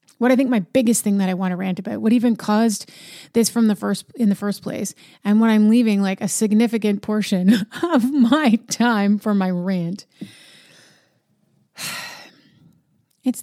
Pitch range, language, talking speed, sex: 200-235 Hz, English, 170 wpm, female